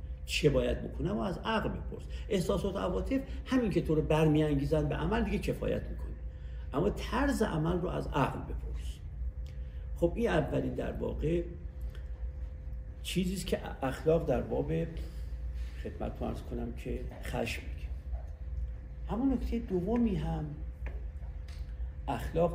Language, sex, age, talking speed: Persian, male, 50-69, 130 wpm